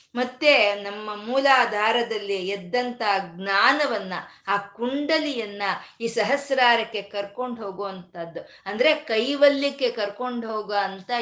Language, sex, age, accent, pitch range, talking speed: Kannada, female, 20-39, native, 205-290 Hz, 85 wpm